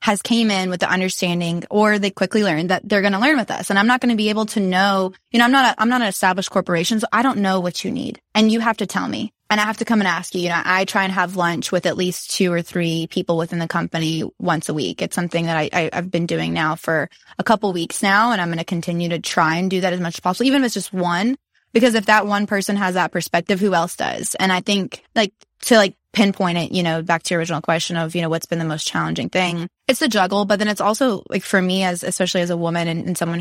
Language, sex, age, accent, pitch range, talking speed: English, female, 20-39, American, 175-205 Hz, 295 wpm